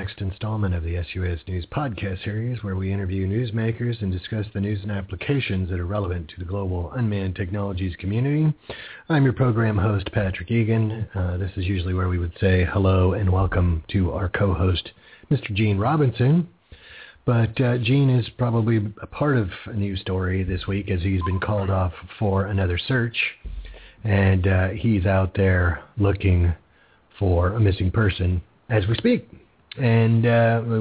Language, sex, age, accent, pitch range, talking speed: English, male, 40-59, American, 95-110 Hz, 170 wpm